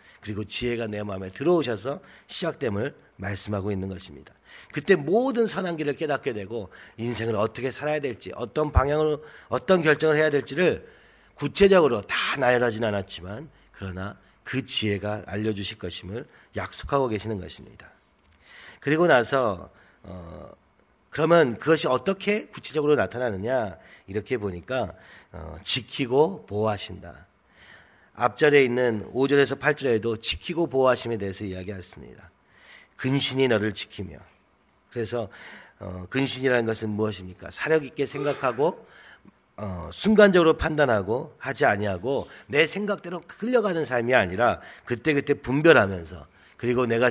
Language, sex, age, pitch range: Korean, male, 40-59, 100-150 Hz